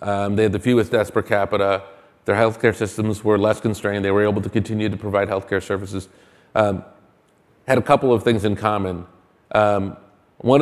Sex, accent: male, American